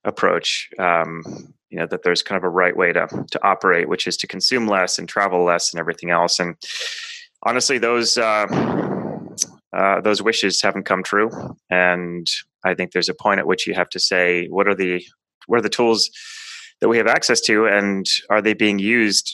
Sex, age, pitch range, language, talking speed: male, 20-39, 90-110 Hz, English, 195 wpm